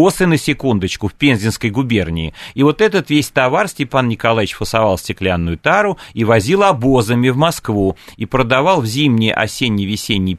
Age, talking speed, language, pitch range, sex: 40-59, 135 wpm, Russian, 110-145 Hz, male